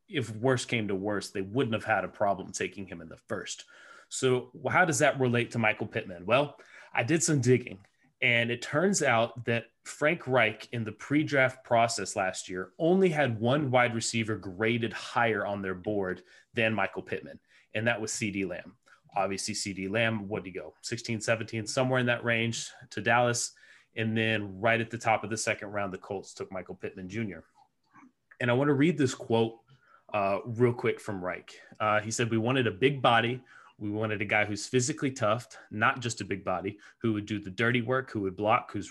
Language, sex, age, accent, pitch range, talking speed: English, male, 30-49, American, 105-125 Hz, 205 wpm